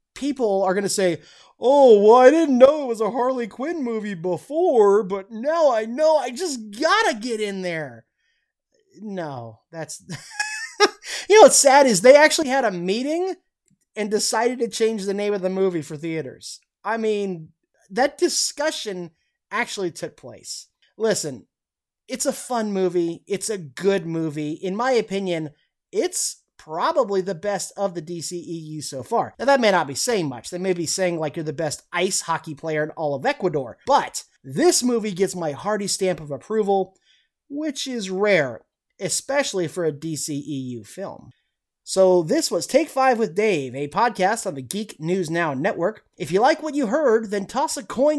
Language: English